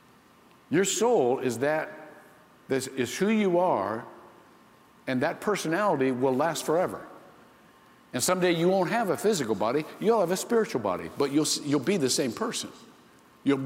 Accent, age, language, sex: American, 60-79, English, male